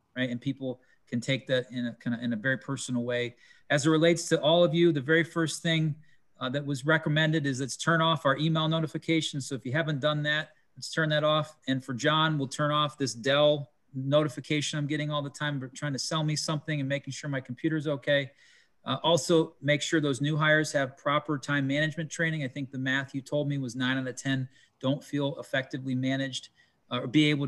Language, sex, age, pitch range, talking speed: English, male, 40-59, 130-155 Hz, 230 wpm